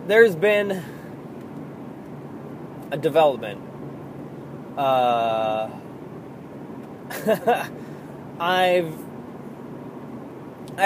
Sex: male